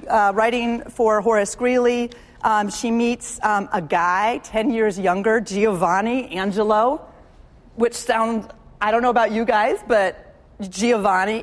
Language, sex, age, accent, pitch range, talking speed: English, female, 30-49, American, 210-250 Hz, 135 wpm